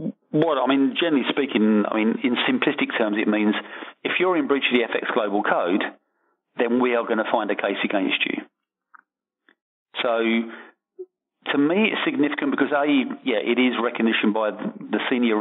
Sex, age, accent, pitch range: male, 40-59, British, 110-130 Hz